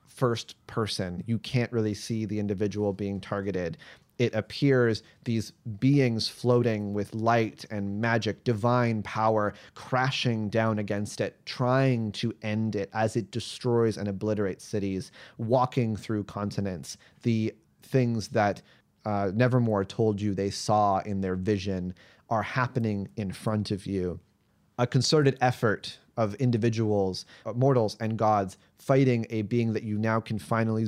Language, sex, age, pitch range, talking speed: English, male, 30-49, 105-120 Hz, 140 wpm